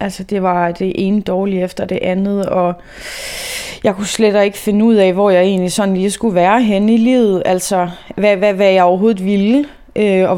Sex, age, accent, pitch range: female, 20-39, native, 175-205 Hz